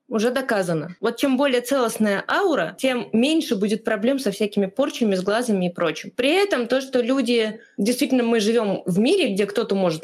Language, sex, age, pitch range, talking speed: Russian, female, 20-39, 185-235 Hz, 185 wpm